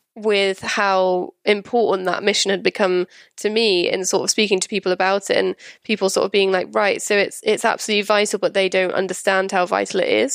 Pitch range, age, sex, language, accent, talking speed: 185-220 Hz, 10-29, female, English, British, 215 wpm